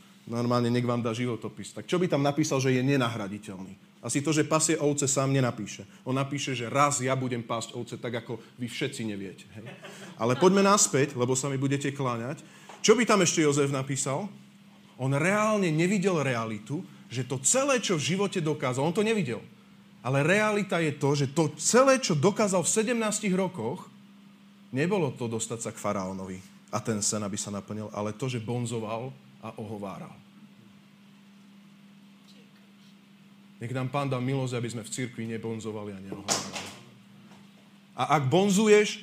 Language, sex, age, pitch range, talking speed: Slovak, male, 30-49, 120-195 Hz, 165 wpm